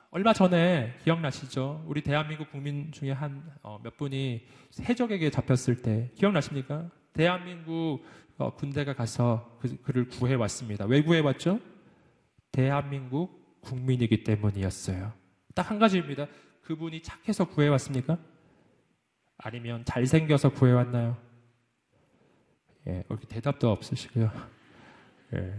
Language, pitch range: Korean, 125-175 Hz